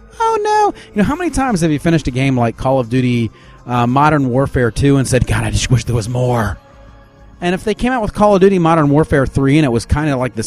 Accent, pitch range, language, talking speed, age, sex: American, 125-170 Hz, English, 275 wpm, 40-59, male